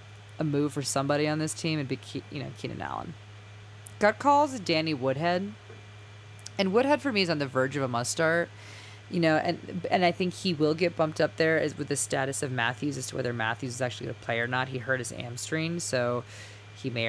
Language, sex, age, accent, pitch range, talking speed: English, female, 20-39, American, 105-155 Hz, 230 wpm